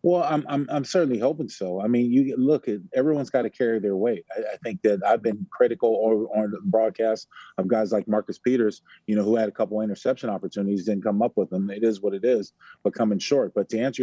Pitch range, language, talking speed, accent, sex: 100-120 Hz, English, 250 wpm, American, male